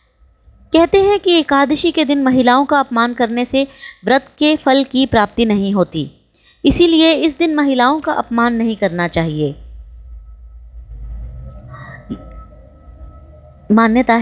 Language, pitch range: Hindi, 185-280 Hz